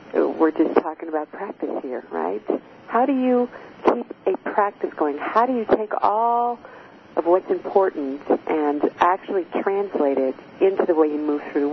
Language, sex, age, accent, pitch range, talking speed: English, female, 50-69, American, 155-200 Hz, 170 wpm